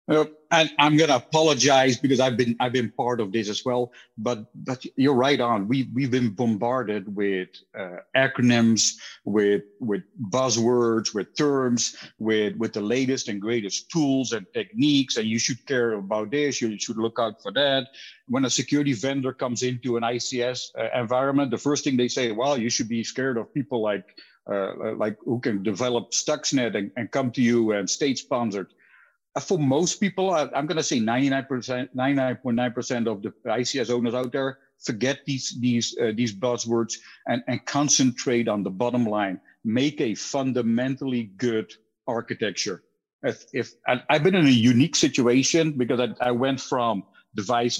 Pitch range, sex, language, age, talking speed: 115-135 Hz, male, English, 50-69, 185 wpm